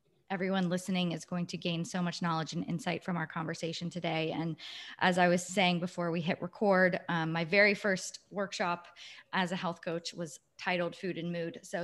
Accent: American